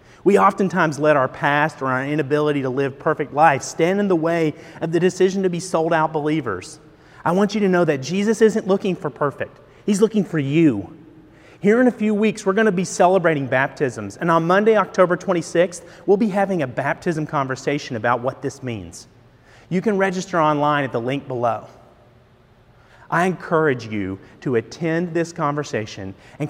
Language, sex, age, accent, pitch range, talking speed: English, male, 30-49, American, 120-165 Hz, 180 wpm